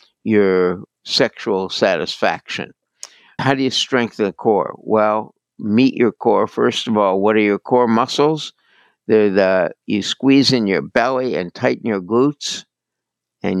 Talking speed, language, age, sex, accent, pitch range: 145 wpm, English, 60-79, male, American, 100-125 Hz